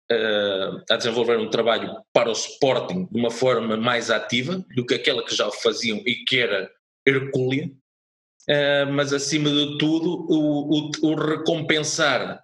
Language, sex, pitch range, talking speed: Portuguese, male, 110-140 Hz, 140 wpm